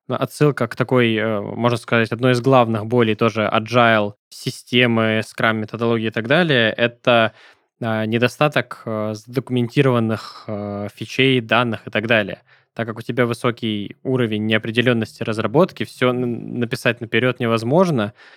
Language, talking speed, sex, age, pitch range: Russian, 120 wpm, male, 20-39, 110-125 Hz